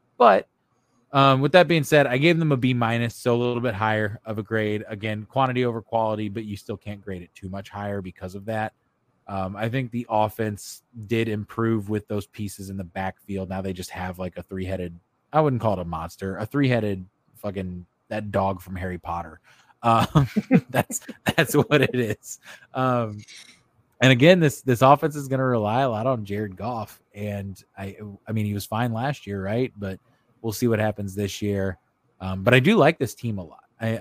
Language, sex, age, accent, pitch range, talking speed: English, male, 20-39, American, 100-125 Hz, 210 wpm